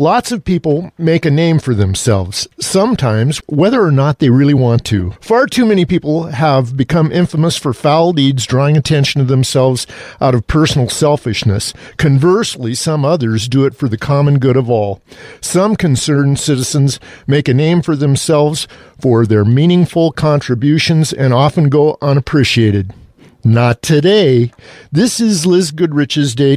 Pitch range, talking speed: 125-155 Hz, 155 wpm